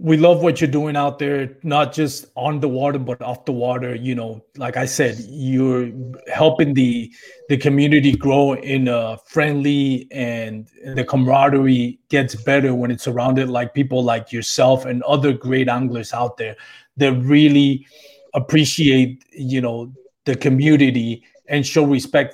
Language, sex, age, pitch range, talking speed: English, male, 30-49, 125-150 Hz, 160 wpm